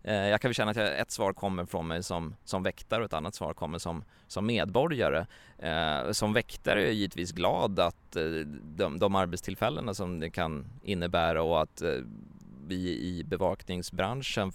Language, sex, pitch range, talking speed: Swedish, male, 90-110 Hz, 165 wpm